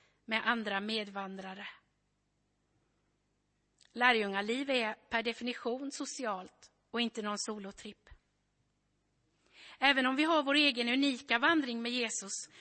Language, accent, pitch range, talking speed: Swedish, native, 205-265 Hz, 110 wpm